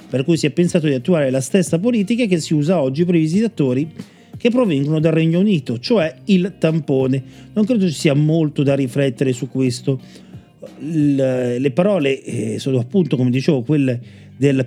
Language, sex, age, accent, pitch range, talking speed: Italian, male, 40-59, native, 135-190 Hz, 170 wpm